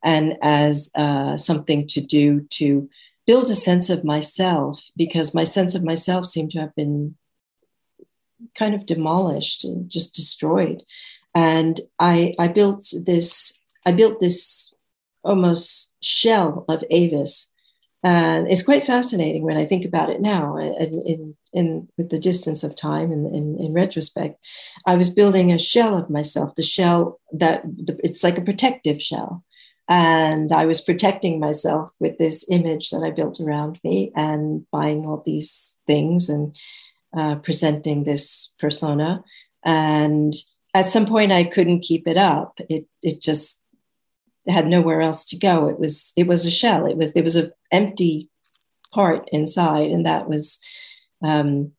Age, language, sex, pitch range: 40-59, English, female, 150-180 Hz